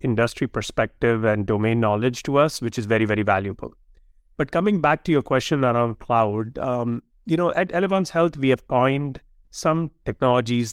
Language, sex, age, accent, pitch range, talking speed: English, male, 30-49, Indian, 110-135 Hz, 175 wpm